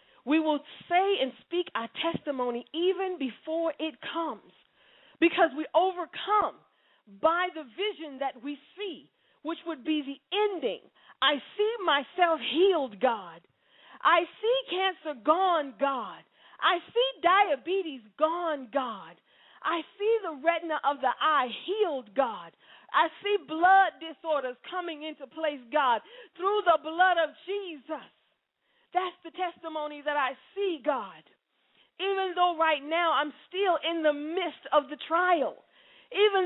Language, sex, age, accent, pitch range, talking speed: English, female, 40-59, American, 290-360 Hz, 135 wpm